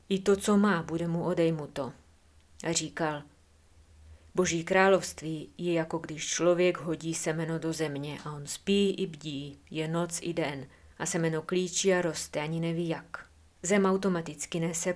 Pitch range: 150-175 Hz